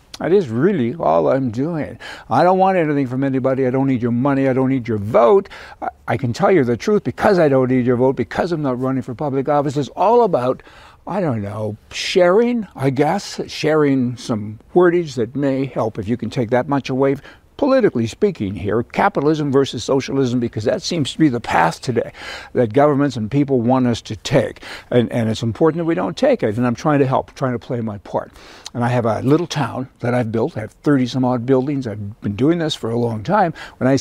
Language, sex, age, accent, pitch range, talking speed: English, male, 60-79, American, 120-145 Hz, 230 wpm